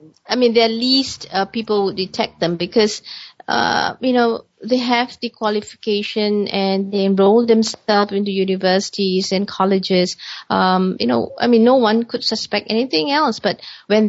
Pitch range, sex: 185-220 Hz, female